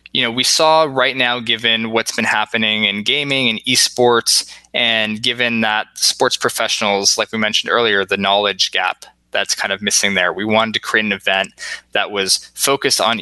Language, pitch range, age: English, 100-120 Hz, 20-39